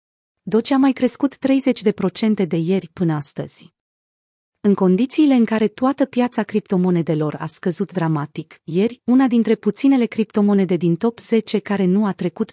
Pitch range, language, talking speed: 175-230 Hz, Romanian, 150 wpm